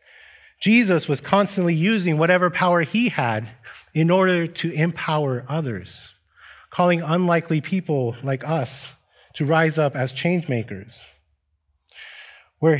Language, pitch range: English, 125-170 Hz